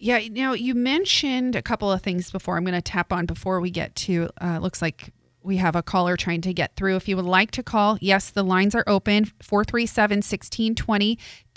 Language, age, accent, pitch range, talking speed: English, 30-49, American, 175-215 Hz, 220 wpm